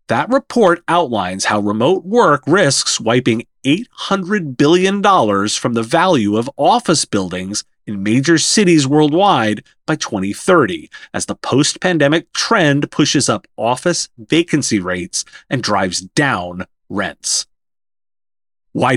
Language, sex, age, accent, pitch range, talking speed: English, male, 30-49, American, 120-185 Hz, 115 wpm